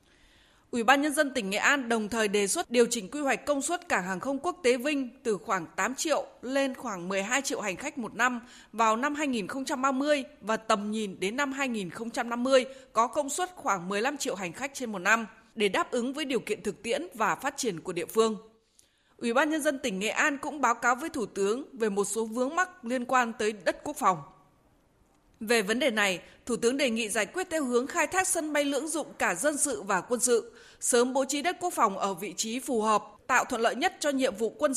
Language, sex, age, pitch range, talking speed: Vietnamese, female, 20-39, 220-285 Hz, 235 wpm